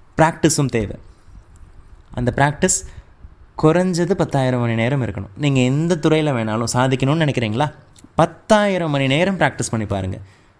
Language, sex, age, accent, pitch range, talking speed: Tamil, male, 20-39, native, 100-150 Hz, 120 wpm